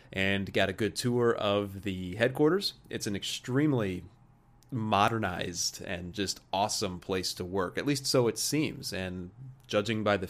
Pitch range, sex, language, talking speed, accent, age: 95-130 Hz, male, English, 155 wpm, American, 30-49